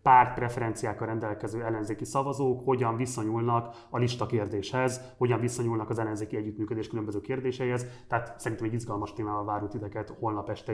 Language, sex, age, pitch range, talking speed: Hungarian, male, 30-49, 110-130 Hz, 145 wpm